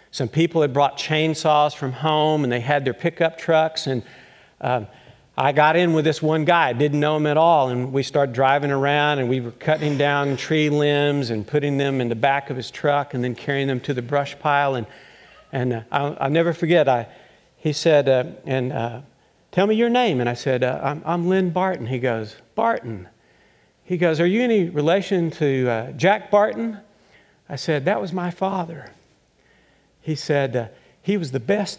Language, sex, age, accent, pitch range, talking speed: English, male, 50-69, American, 135-180 Hz, 205 wpm